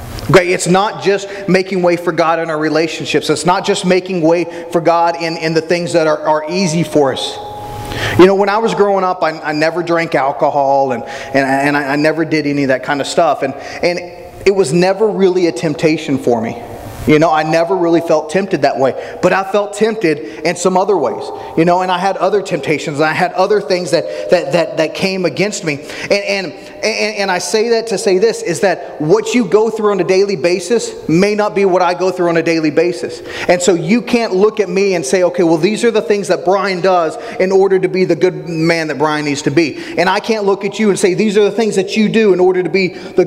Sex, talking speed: male, 250 wpm